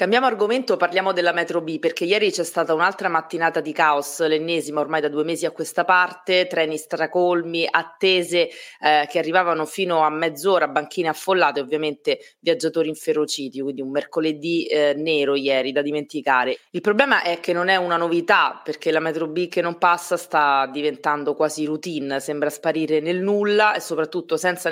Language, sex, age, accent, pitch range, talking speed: Italian, female, 20-39, native, 150-185 Hz, 170 wpm